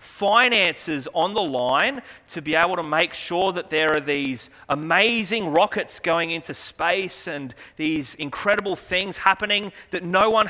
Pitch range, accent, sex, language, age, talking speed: 150-205 Hz, Australian, male, English, 30-49, 155 wpm